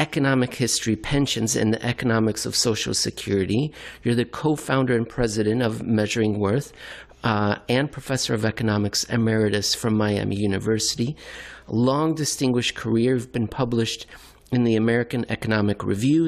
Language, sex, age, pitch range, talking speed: English, male, 50-69, 110-140 Hz, 135 wpm